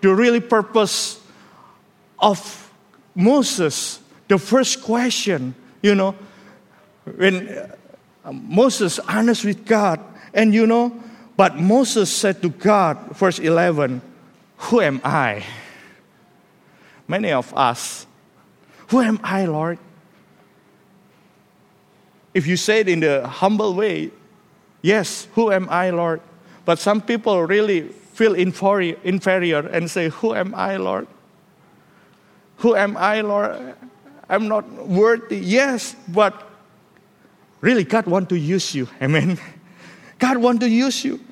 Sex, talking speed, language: male, 120 wpm, English